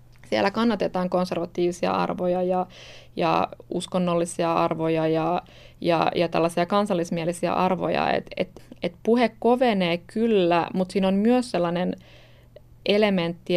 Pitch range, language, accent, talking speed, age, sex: 170-200 Hz, Finnish, native, 115 wpm, 20-39, female